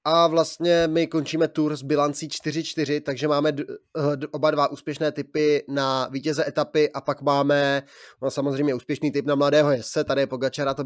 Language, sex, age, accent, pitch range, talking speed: Czech, male, 20-39, native, 140-155 Hz, 180 wpm